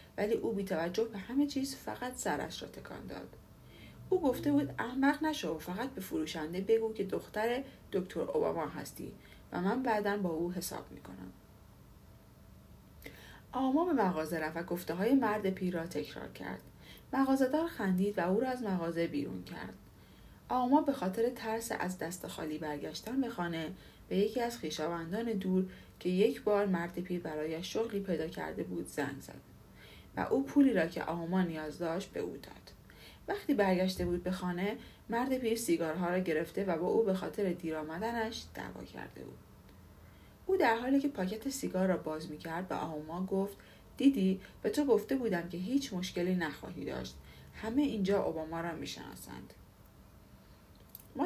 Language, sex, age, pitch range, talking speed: Persian, female, 40-59, 165-230 Hz, 165 wpm